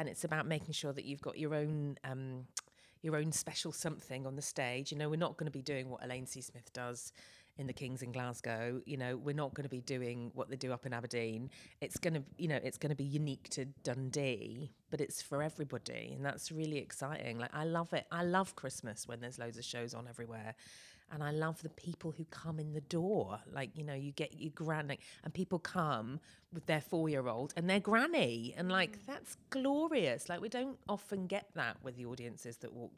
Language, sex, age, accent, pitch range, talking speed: English, female, 30-49, British, 125-155 Hz, 225 wpm